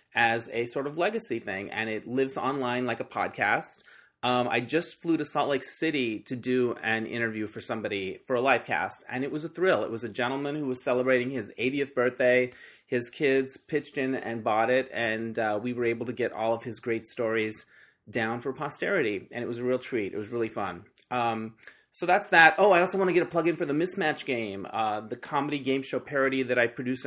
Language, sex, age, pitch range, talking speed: English, male, 30-49, 115-140 Hz, 230 wpm